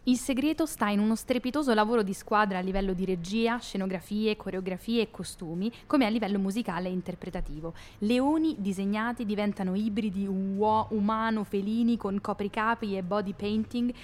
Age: 20-39